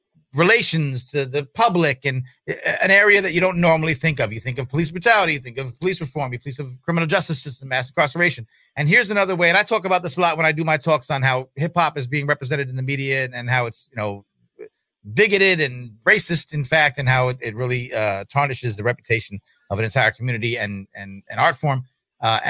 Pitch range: 120-165 Hz